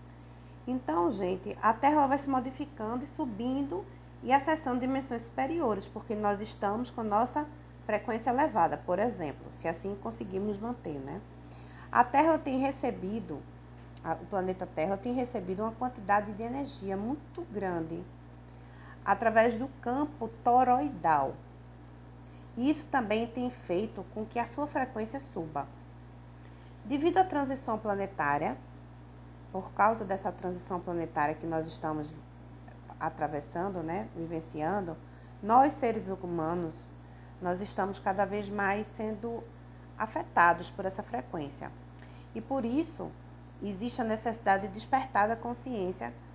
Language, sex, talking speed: Portuguese, female, 125 wpm